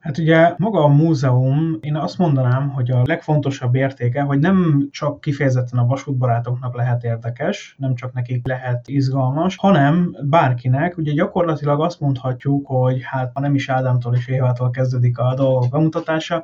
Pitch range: 125-145 Hz